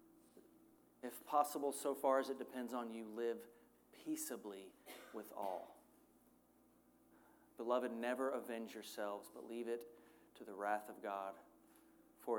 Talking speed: 125 wpm